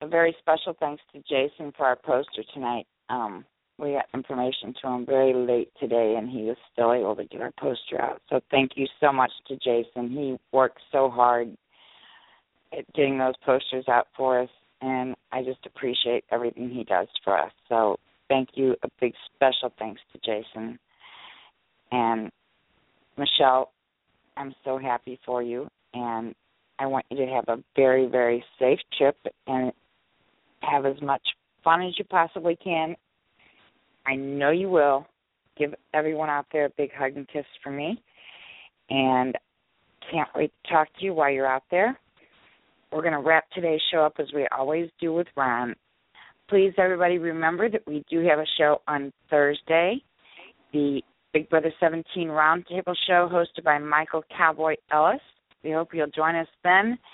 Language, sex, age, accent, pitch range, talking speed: English, female, 40-59, American, 130-160 Hz, 165 wpm